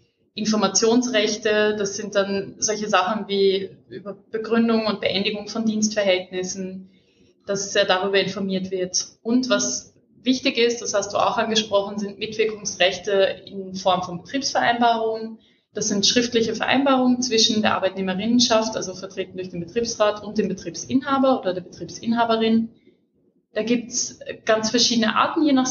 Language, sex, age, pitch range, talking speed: German, female, 20-39, 195-235 Hz, 135 wpm